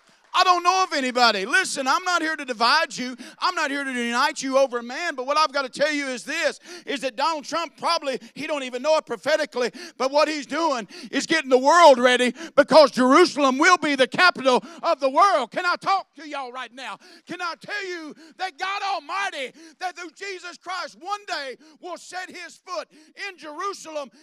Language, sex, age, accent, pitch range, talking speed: English, male, 50-69, American, 205-330 Hz, 210 wpm